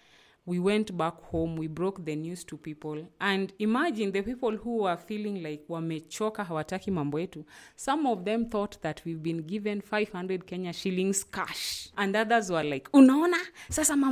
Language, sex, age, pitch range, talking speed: English, female, 30-49, 170-220 Hz, 165 wpm